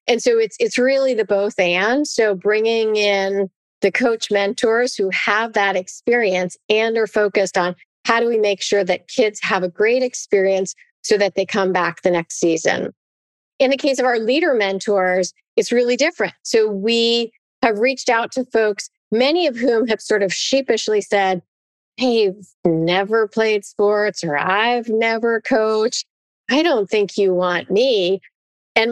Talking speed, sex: 170 wpm, female